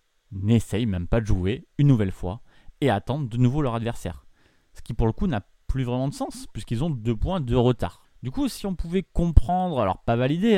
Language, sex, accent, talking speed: French, male, French, 220 wpm